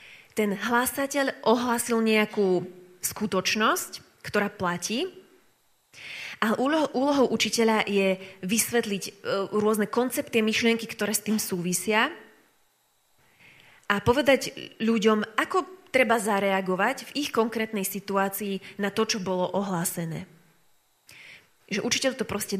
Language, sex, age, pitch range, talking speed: Slovak, female, 20-39, 185-220 Hz, 100 wpm